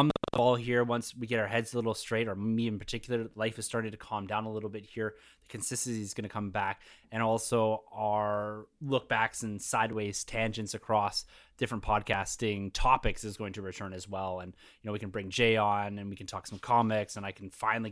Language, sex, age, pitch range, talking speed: English, male, 20-39, 105-125 Hz, 225 wpm